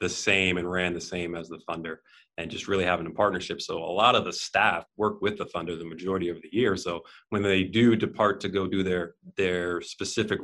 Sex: male